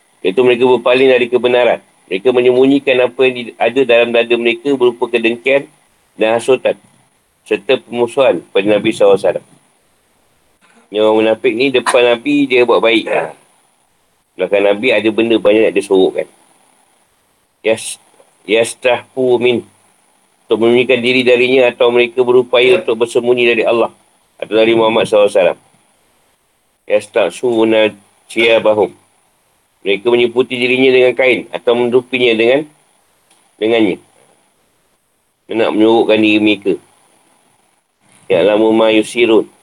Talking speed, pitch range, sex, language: 110 wpm, 110-125 Hz, male, Malay